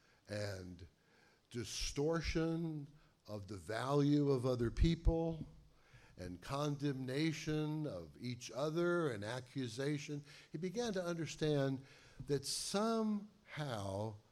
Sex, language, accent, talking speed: male, English, American, 90 wpm